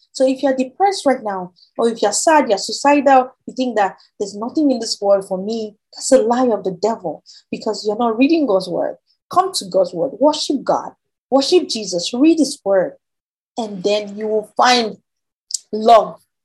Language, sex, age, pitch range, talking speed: English, female, 20-39, 190-245 Hz, 185 wpm